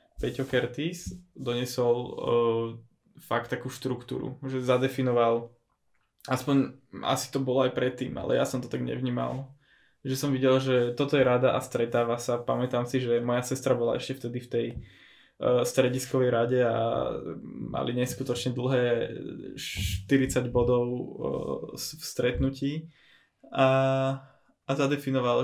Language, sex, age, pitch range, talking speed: Slovak, male, 20-39, 120-135 Hz, 130 wpm